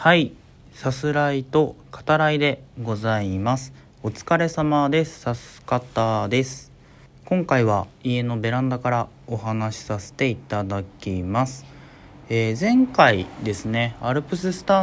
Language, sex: Japanese, male